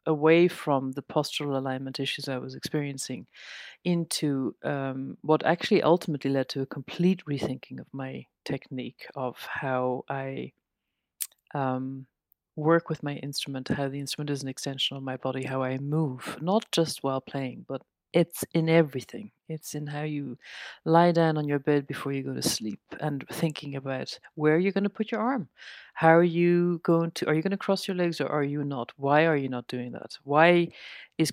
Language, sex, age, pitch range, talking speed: English, female, 40-59, 140-170 Hz, 190 wpm